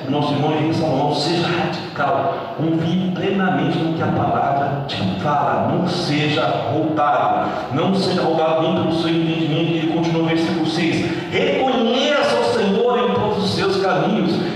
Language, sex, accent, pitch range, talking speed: Portuguese, male, Brazilian, 155-210 Hz, 155 wpm